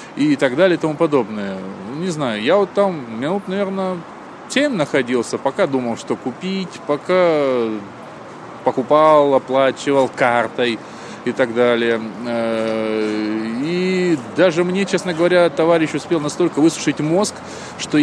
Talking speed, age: 125 wpm, 20-39